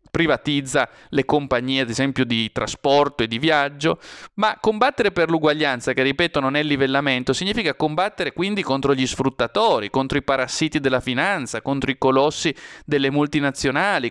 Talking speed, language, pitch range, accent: 150 wpm, Italian, 135-165 Hz, native